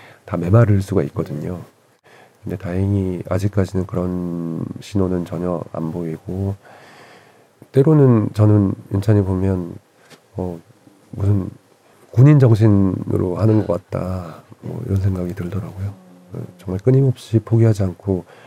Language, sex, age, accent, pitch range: Korean, male, 40-59, native, 90-115 Hz